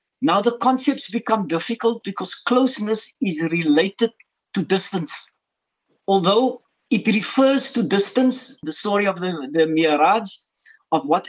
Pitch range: 180-250 Hz